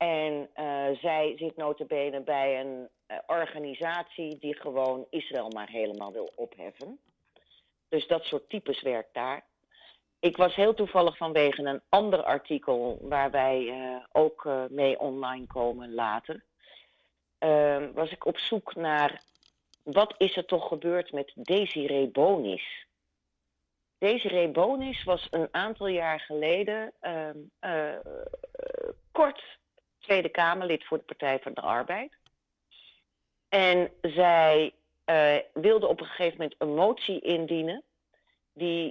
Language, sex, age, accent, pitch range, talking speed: Dutch, female, 40-59, Dutch, 135-175 Hz, 130 wpm